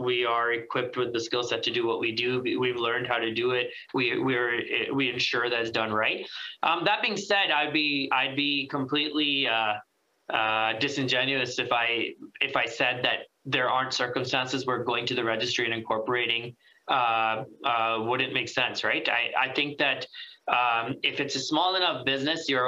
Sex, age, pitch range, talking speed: male, 20-39, 120-145 Hz, 195 wpm